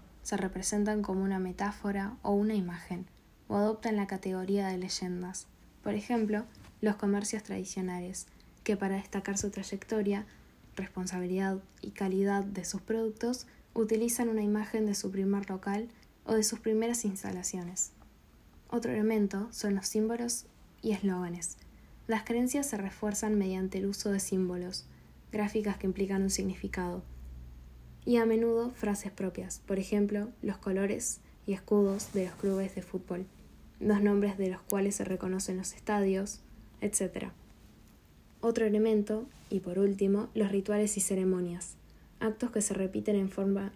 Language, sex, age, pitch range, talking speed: Spanish, female, 10-29, 190-215 Hz, 145 wpm